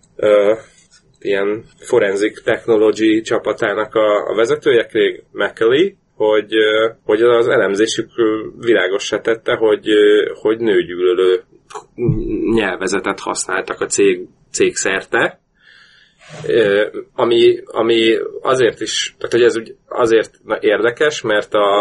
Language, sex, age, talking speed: Hungarian, male, 30-49, 110 wpm